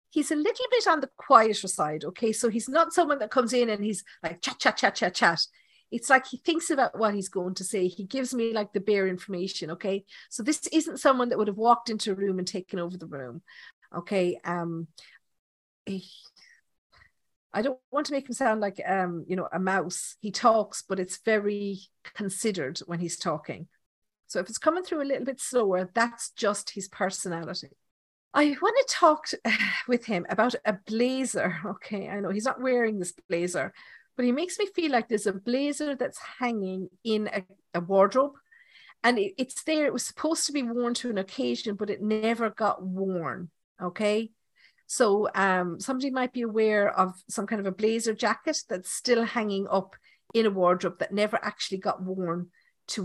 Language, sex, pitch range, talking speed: English, female, 185-250 Hz, 195 wpm